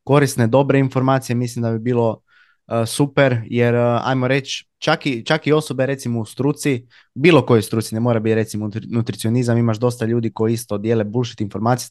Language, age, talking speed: Croatian, 20-39, 180 wpm